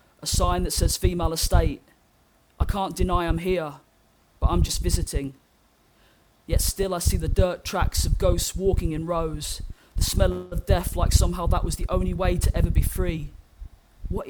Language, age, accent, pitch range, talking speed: English, 20-39, British, 150-190 Hz, 180 wpm